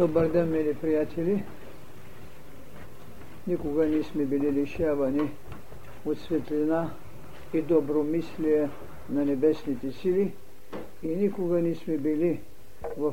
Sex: male